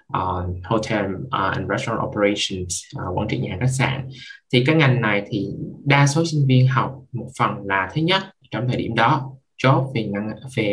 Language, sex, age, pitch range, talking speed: Vietnamese, male, 20-39, 110-135 Hz, 195 wpm